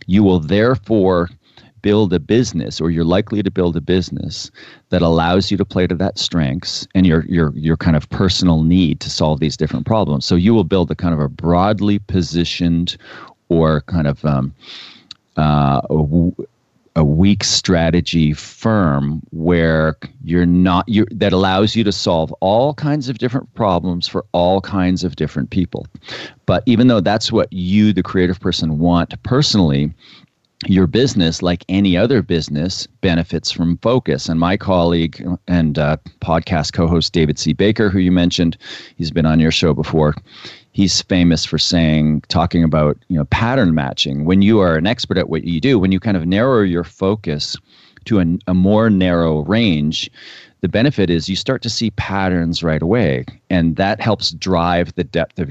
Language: English